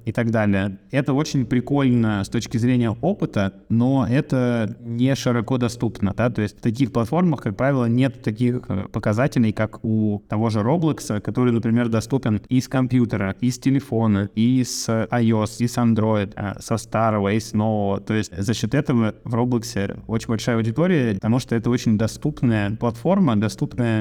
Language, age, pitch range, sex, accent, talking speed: Russian, 20-39, 105-125 Hz, male, native, 160 wpm